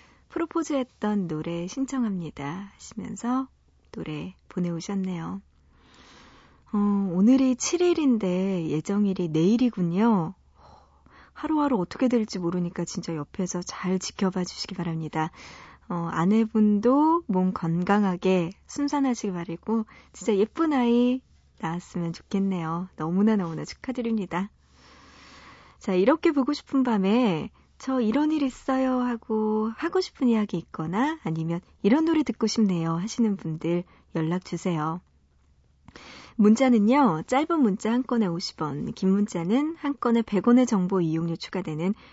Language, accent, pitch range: Korean, native, 175-245 Hz